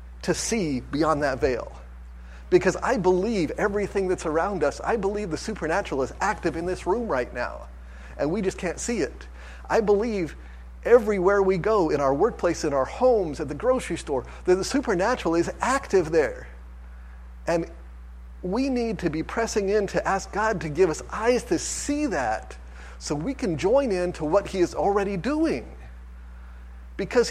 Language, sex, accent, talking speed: English, male, American, 175 wpm